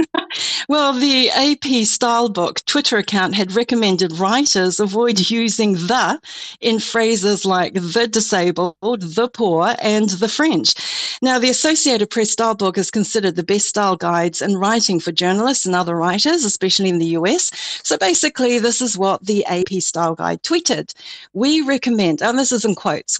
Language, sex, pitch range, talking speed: English, female, 190-245 Hz, 160 wpm